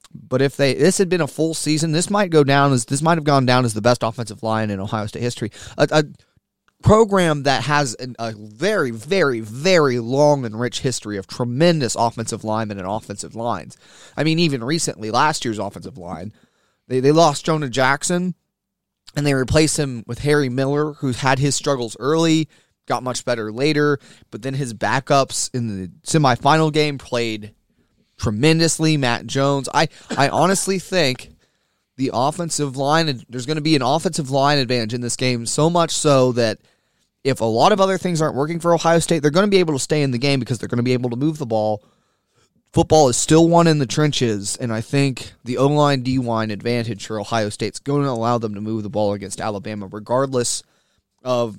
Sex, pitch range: male, 115-150 Hz